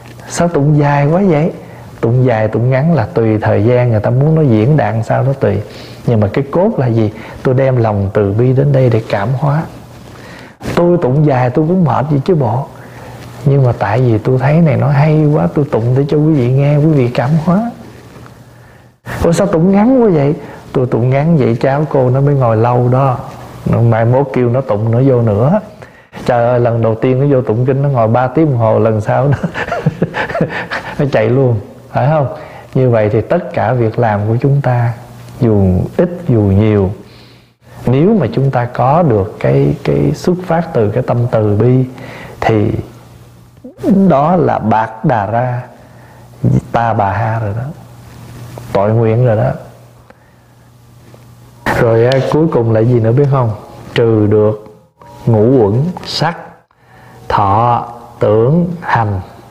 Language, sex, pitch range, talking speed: Vietnamese, male, 115-145 Hz, 180 wpm